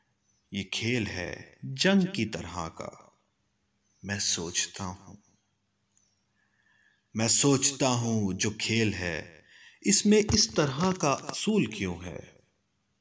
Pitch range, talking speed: 95-135 Hz, 110 wpm